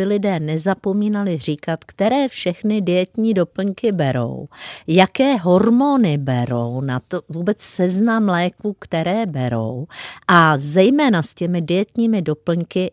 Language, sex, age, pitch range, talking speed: Czech, female, 50-69, 165-210 Hz, 110 wpm